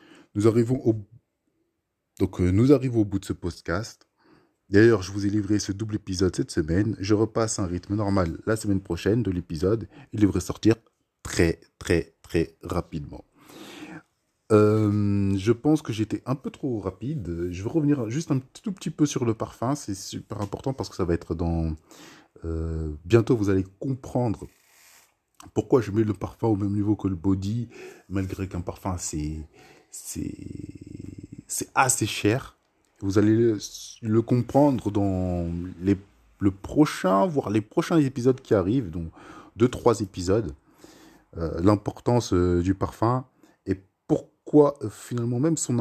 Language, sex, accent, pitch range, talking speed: French, male, French, 90-115 Hz, 155 wpm